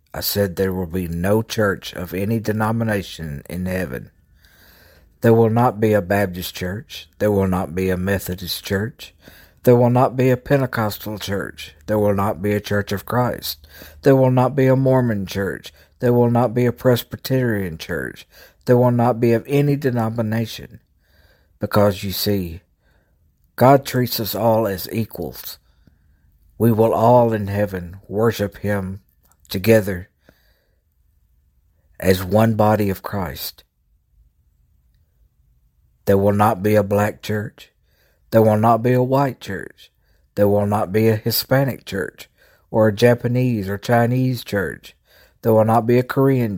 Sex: male